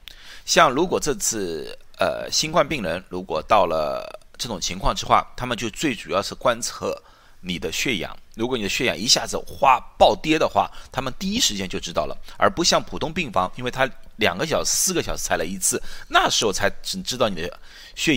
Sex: male